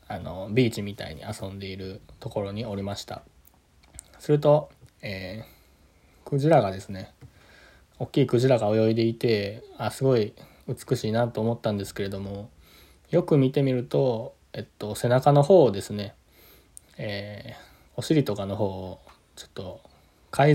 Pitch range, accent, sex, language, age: 95-120 Hz, native, male, Japanese, 20-39